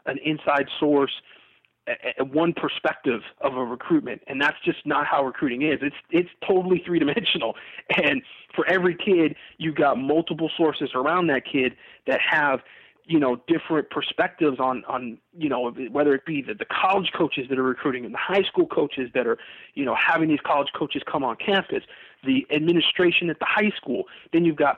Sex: male